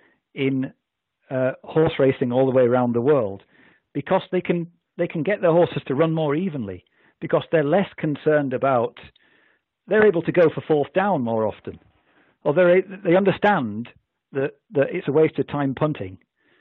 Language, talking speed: English, 170 wpm